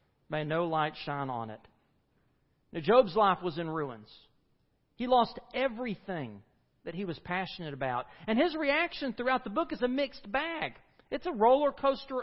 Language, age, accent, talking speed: English, 40-59, American, 165 wpm